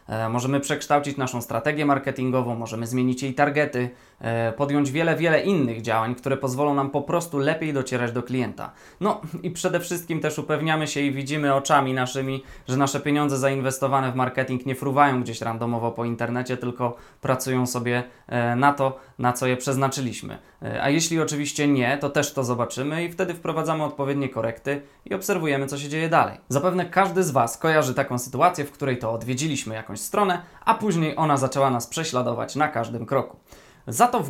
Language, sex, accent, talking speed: Polish, male, native, 175 wpm